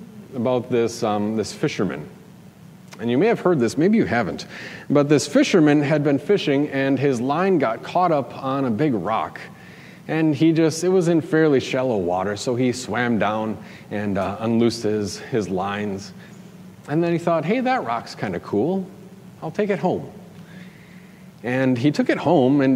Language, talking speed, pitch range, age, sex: English, 180 wpm, 115-175 Hz, 40-59, male